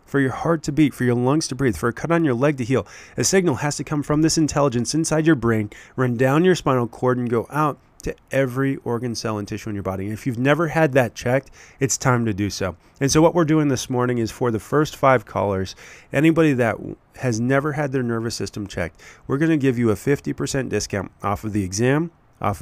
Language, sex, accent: English, male, American